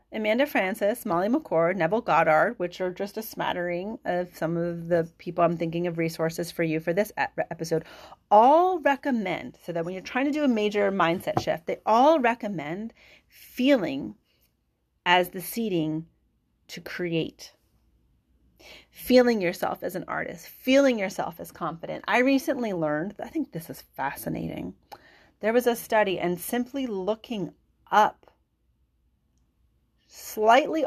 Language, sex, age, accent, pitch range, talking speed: English, female, 30-49, American, 170-225 Hz, 140 wpm